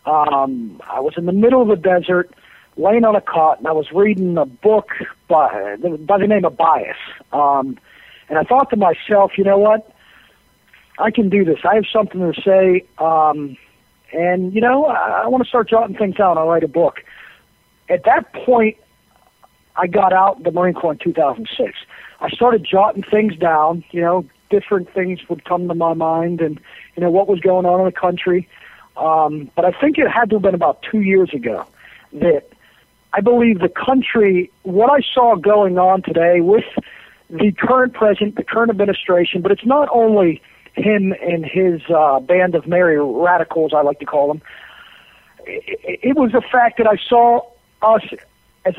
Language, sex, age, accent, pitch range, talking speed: English, male, 50-69, American, 175-225 Hz, 185 wpm